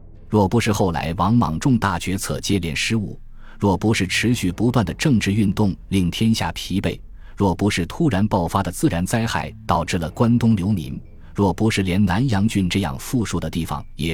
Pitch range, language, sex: 85-110 Hz, Chinese, male